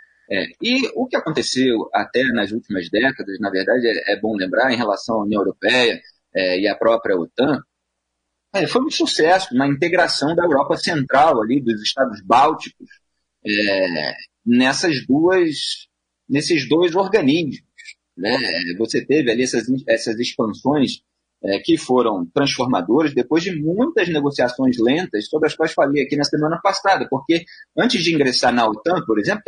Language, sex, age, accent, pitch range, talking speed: Portuguese, male, 30-49, Brazilian, 120-190 Hz, 155 wpm